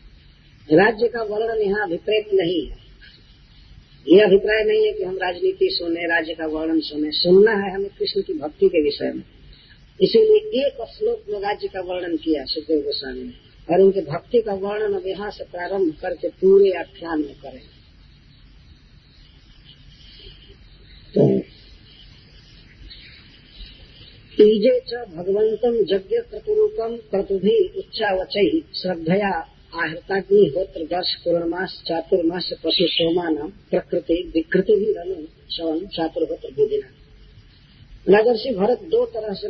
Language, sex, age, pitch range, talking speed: Hindi, female, 40-59, 165-245 Hz, 120 wpm